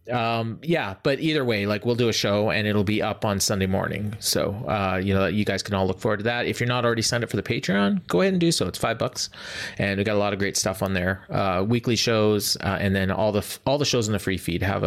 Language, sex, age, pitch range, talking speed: English, male, 30-49, 105-140 Hz, 295 wpm